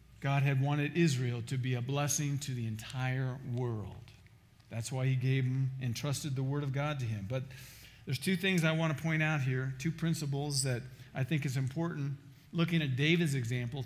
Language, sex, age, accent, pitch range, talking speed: English, male, 50-69, American, 135-170 Hz, 200 wpm